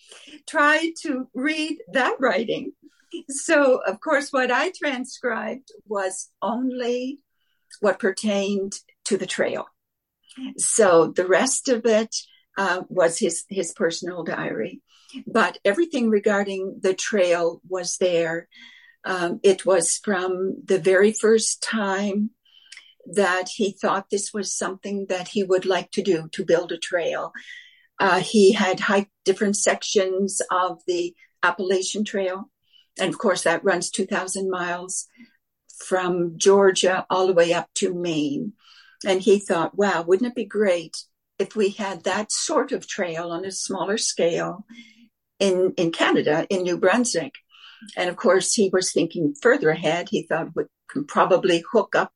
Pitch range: 185-235 Hz